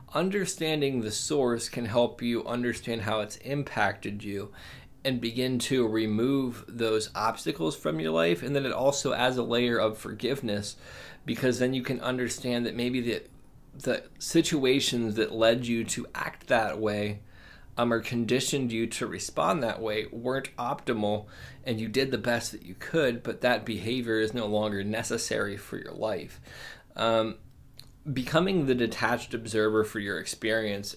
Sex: male